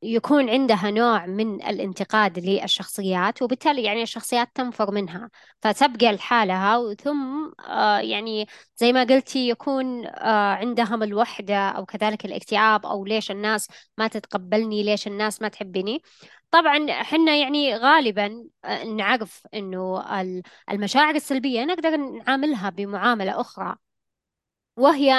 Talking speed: 110 wpm